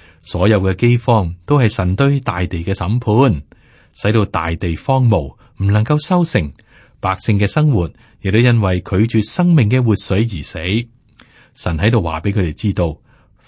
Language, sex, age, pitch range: Chinese, male, 30-49, 90-120 Hz